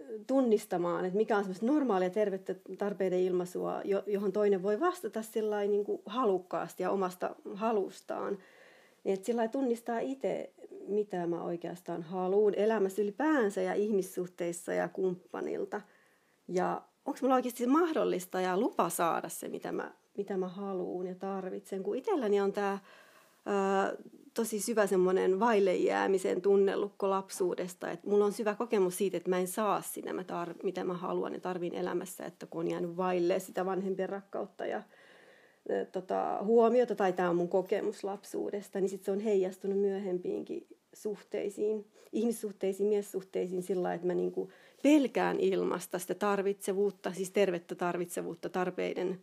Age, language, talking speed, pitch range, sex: 30-49, Finnish, 135 wpm, 185-210 Hz, female